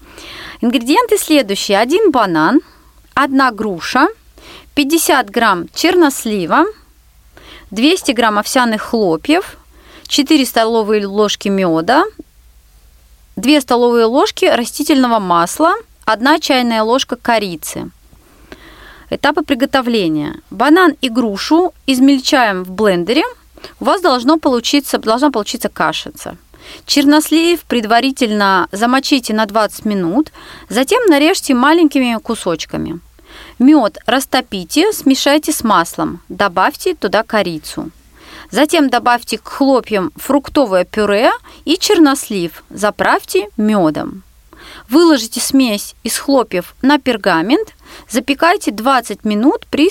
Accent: native